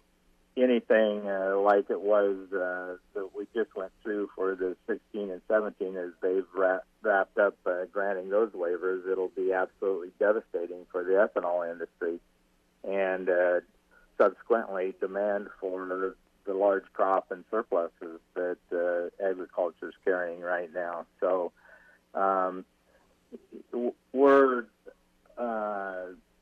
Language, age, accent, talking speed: English, 50-69, American, 120 wpm